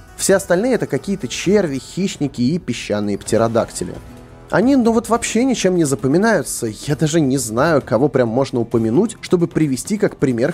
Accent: native